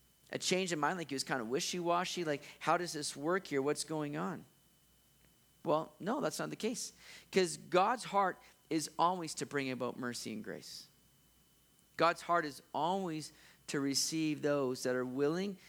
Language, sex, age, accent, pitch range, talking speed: English, male, 40-59, American, 130-170 Hz, 175 wpm